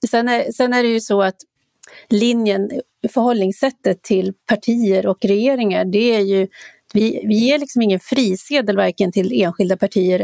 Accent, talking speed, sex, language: native, 150 wpm, female, Swedish